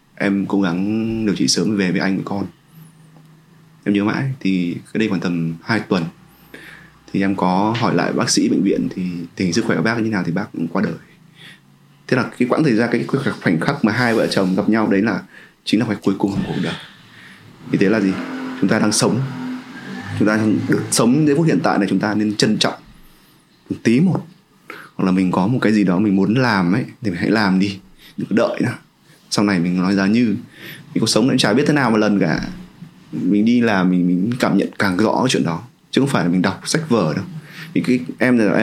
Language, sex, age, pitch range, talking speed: Vietnamese, male, 20-39, 95-125 Hz, 240 wpm